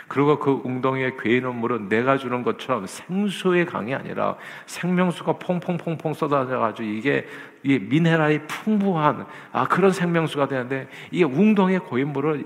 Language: Korean